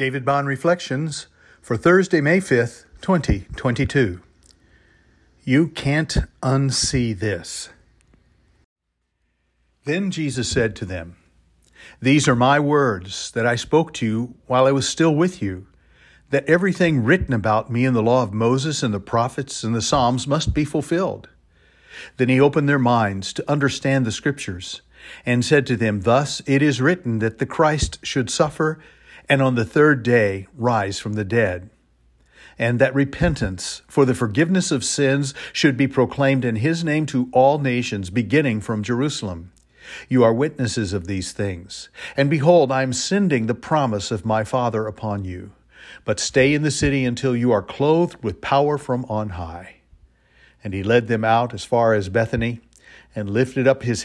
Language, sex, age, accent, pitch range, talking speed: English, male, 50-69, American, 105-140 Hz, 165 wpm